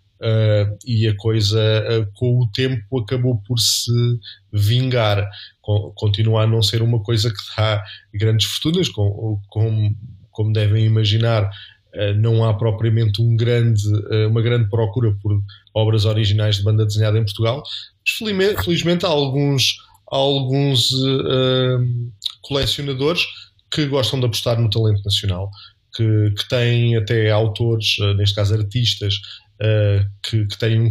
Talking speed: 120 wpm